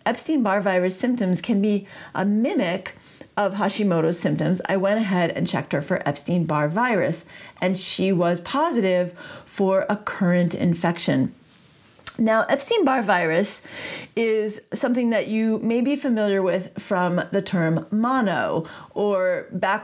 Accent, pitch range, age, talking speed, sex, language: American, 180-235 Hz, 40-59, 135 wpm, female, English